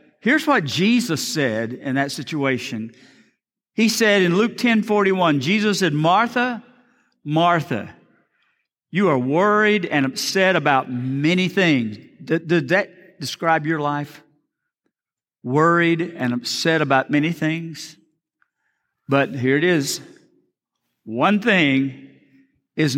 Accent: American